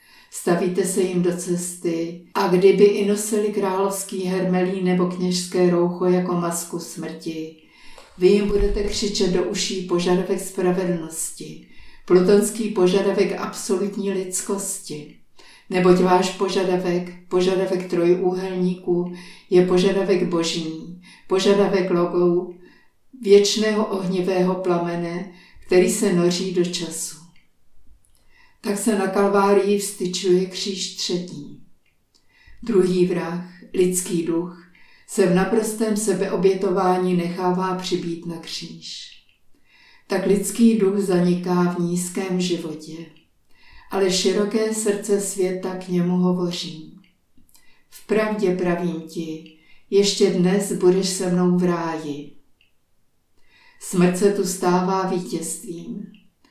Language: Czech